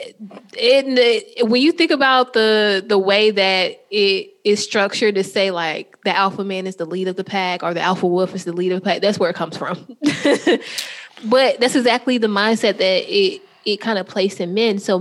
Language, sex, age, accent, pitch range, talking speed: English, female, 20-39, American, 180-225 Hz, 210 wpm